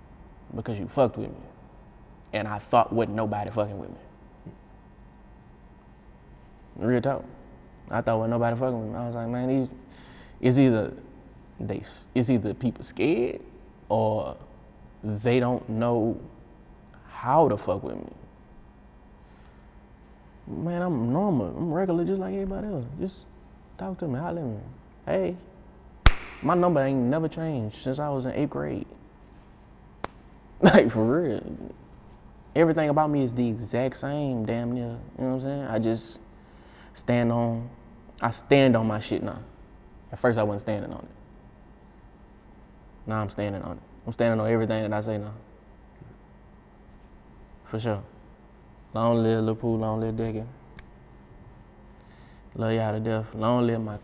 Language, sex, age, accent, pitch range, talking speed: English, male, 20-39, American, 105-125 Hz, 150 wpm